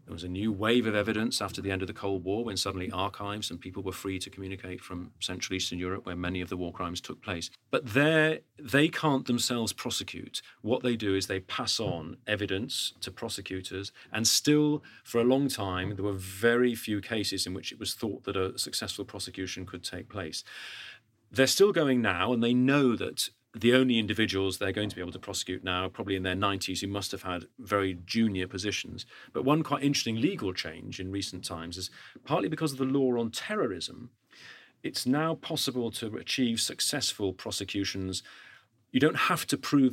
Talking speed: 200 wpm